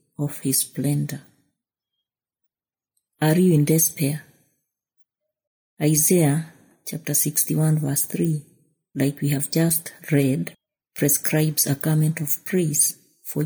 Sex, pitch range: female, 145-170 Hz